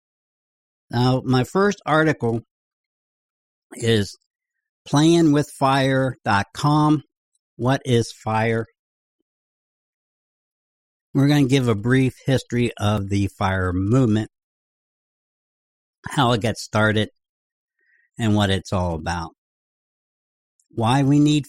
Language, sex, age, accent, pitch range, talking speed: English, male, 60-79, American, 110-150 Hz, 95 wpm